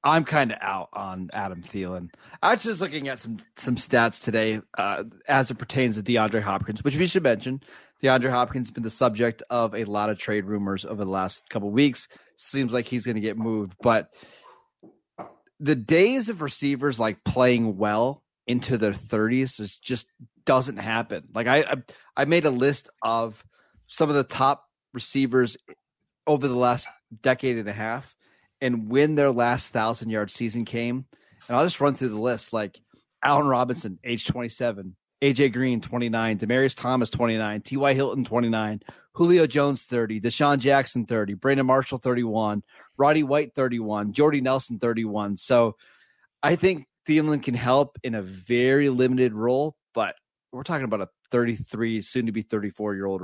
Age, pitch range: 30-49, 110-135 Hz